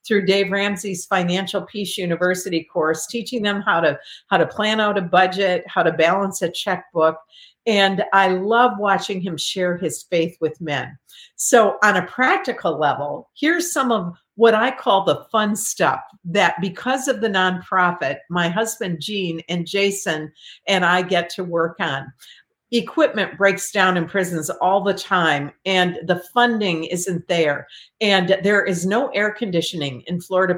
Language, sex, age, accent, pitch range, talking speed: English, female, 50-69, American, 175-220 Hz, 160 wpm